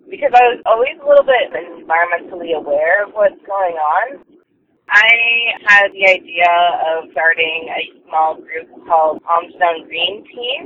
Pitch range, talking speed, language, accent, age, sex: 160-260 Hz, 145 wpm, English, American, 20-39, female